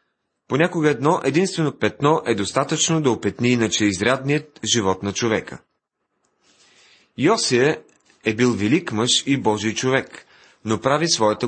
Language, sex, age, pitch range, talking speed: Bulgarian, male, 30-49, 110-150 Hz, 125 wpm